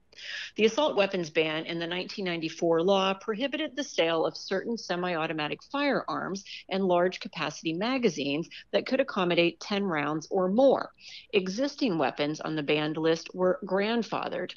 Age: 40-59